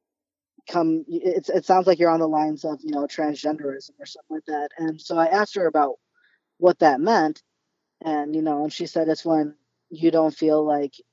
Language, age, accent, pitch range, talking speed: English, 20-39, American, 140-160 Hz, 205 wpm